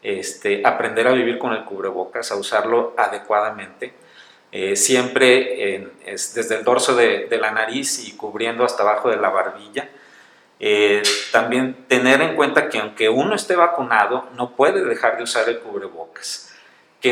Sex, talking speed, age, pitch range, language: male, 160 wpm, 40-59, 120-145 Hz, Spanish